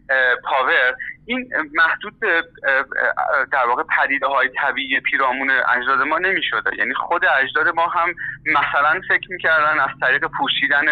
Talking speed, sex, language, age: 125 wpm, male, Persian, 30-49